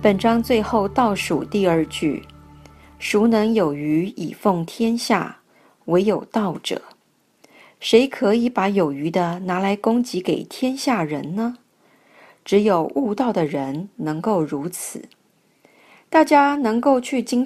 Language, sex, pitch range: Chinese, female, 175-245 Hz